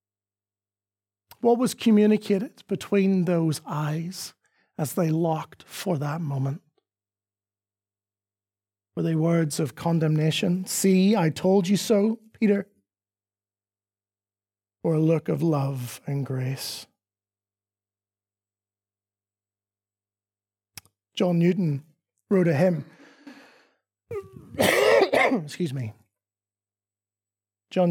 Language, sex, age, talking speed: English, male, 30-49, 80 wpm